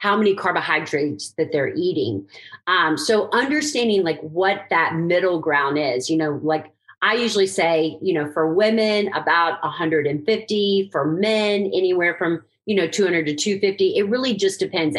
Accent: American